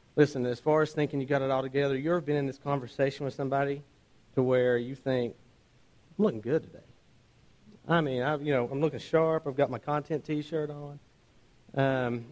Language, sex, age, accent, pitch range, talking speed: English, male, 40-59, American, 120-150 Hz, 195 wpm